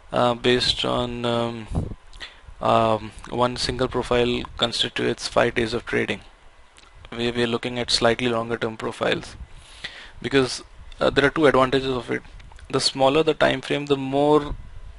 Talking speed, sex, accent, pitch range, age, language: 150 wpm, male, native, 100-125 Hz, 20-39, Tamil